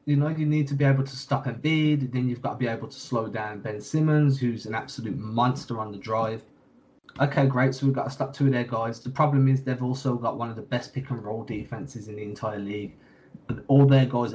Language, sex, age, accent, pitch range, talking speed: English, male, 20-39, British, 115-140 Hz, 255 wpm